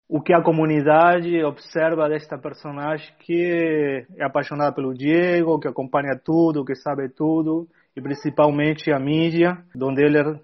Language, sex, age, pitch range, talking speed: Portuguese, male, 30-49, 140-160 Hz, 140 wpm